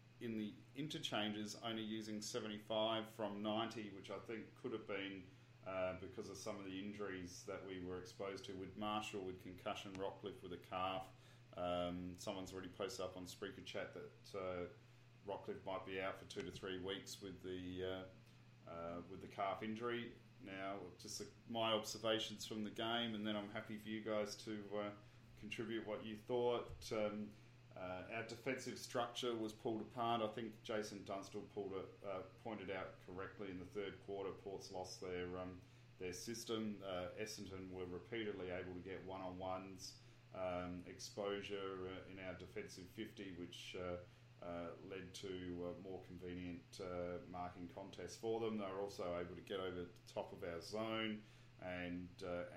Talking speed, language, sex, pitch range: 175 wpm, English, male, 95-110 Hz